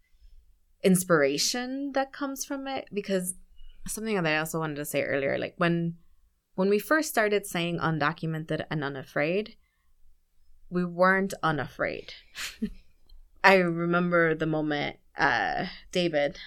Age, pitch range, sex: 20-39, 150-185 Hz, female